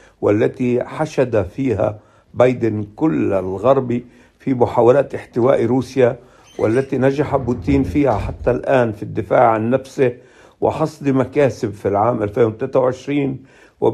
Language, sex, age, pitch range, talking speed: Arabic, male, 60-79, 115-135 Hz, 110 wpm